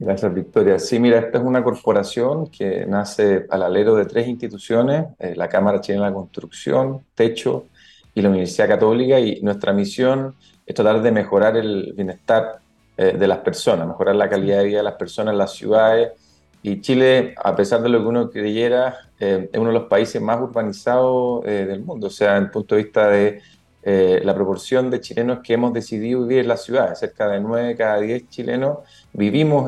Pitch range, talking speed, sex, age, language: 105-125 Hz, 200 wpm, male, 40-59, Spanish